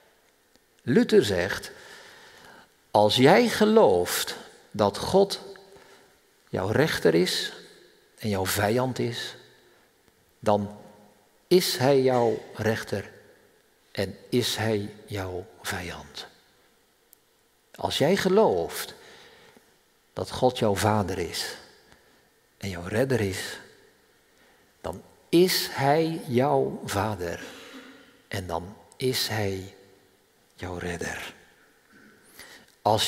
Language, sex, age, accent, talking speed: Dutch, male, 50-69, Dutch, 85 wpm